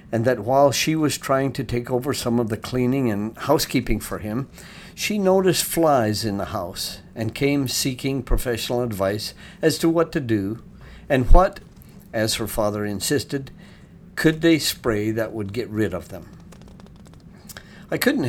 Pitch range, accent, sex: 110-145 Hz, American, male